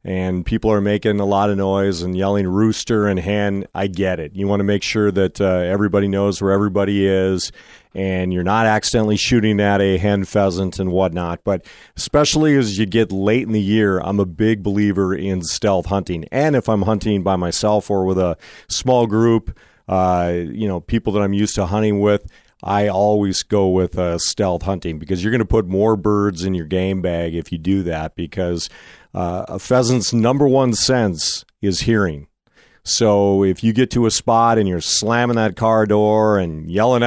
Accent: American